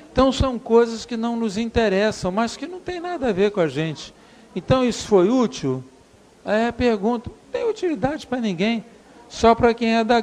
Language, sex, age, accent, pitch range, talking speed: Portuguese, male, 50-69, Brazilian, 180-230 Hz, 195 wpm